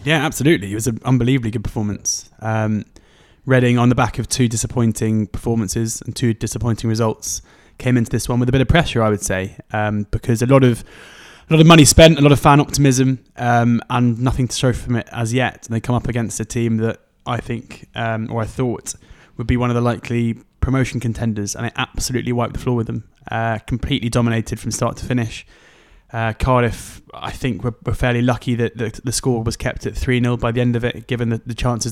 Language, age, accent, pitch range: English, 20-39, British, 115-125 Hz